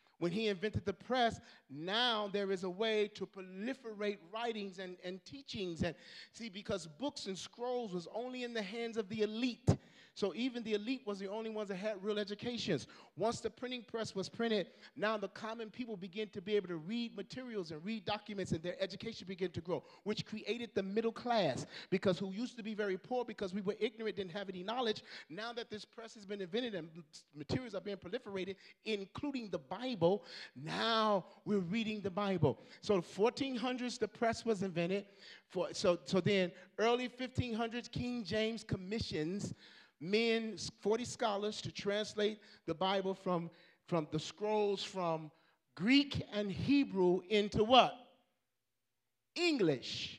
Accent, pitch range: American, 190-235 Hz